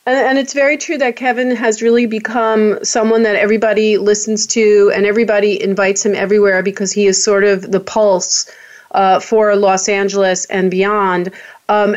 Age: 40-59